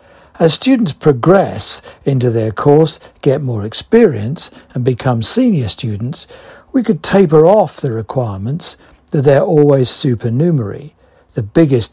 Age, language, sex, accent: 60-79, English, male, British